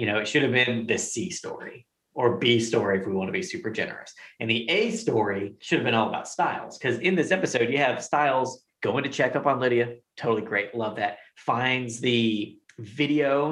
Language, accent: English, American